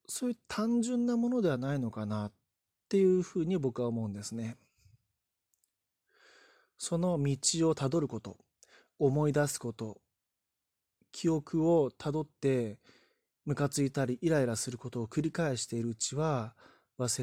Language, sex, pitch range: Japanese, male, 115-160 Hz